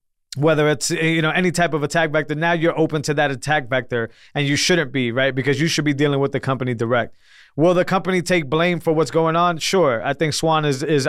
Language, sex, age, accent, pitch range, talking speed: English, male, 20-39, American, 135-165 Hz, 245 wpm